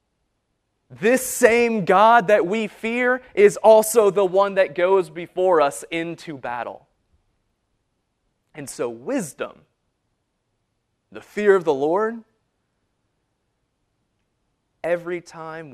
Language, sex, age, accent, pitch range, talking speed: English, male, 30-49, American, 110-160 Hz, 100 wpm